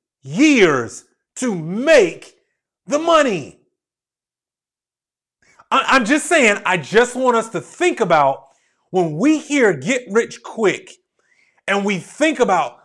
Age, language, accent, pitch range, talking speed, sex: 30-49, English, American, 165-265 Hz, 115 wpm, male